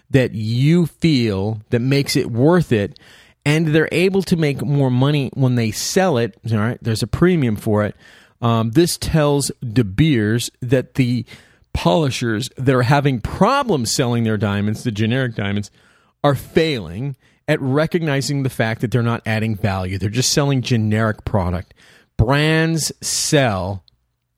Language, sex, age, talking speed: English, male, 30-49, 155 wpm